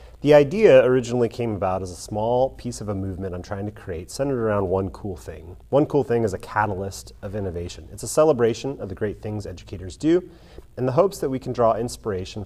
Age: 30-49